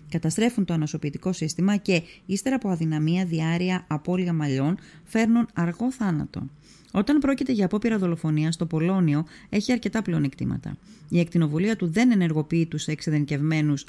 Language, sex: Greek, female